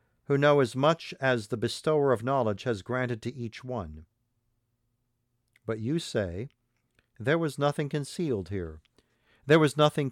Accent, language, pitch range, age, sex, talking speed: American, English, 115-140 Hz, 50-69, male, 150 wpm